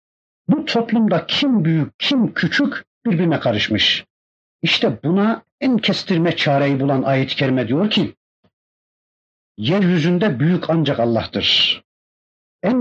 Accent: native